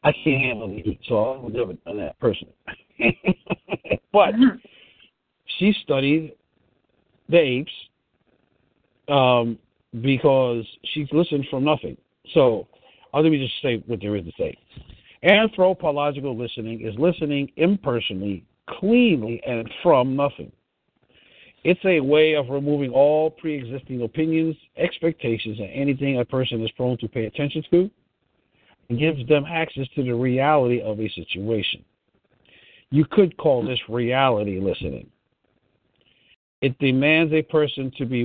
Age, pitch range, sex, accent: 50-69, 120-155 Hz, male, American